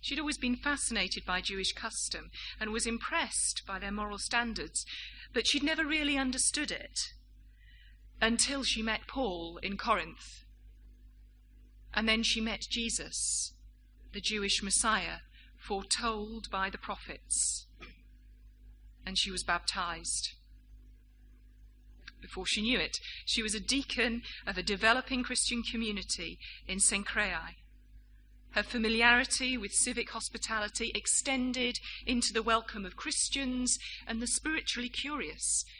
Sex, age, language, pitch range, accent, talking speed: female, 40-59, English, 190-245 Hz, British, 120 wpm